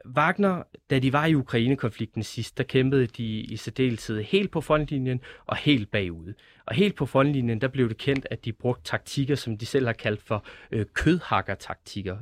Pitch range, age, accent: 110-130 Hz, 30-49, native